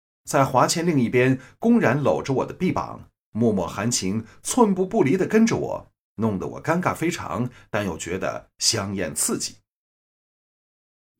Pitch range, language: 100-140 Hz, Chinese